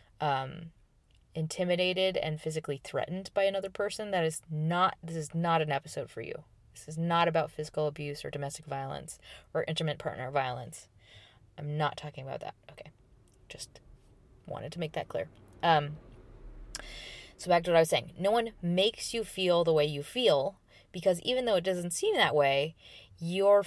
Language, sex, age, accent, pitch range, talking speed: English, female, 20-39, American, 145-185 Hz, 175 wpm